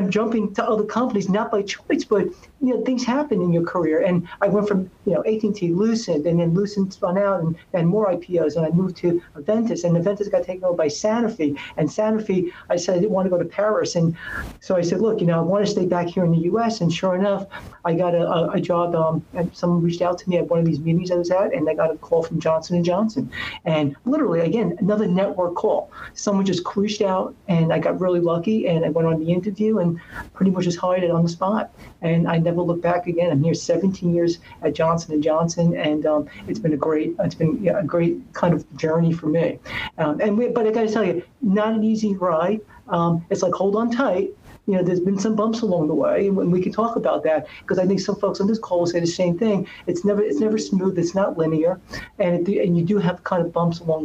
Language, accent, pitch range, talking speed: English, American, 165-205 Hz, 260 wpm